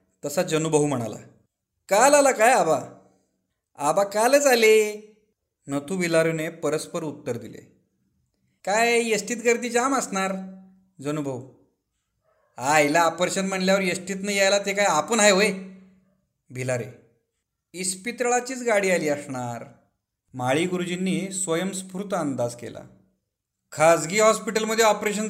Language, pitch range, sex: Marathi, 140-200 Hz, male